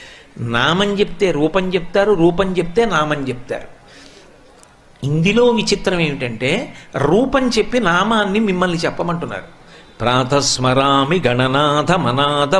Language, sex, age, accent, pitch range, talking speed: Telugu, male, 60-79, native, 155-195 Hz, 90 wpm